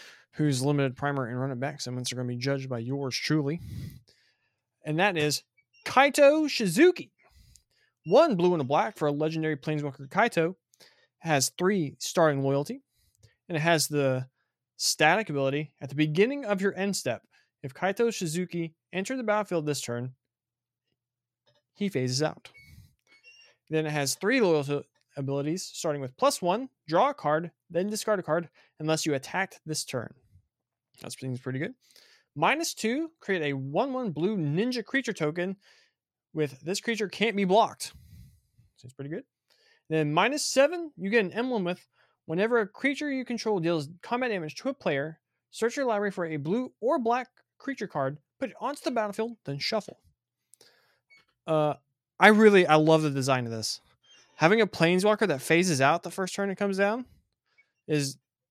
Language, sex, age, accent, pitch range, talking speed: English, male, 20-39, American, 140-215 Hz, 165 wpm